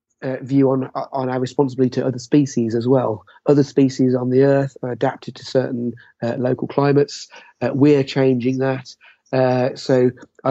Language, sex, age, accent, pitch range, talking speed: English, male, 30-49, British, 125-145 Hz, 170 wpm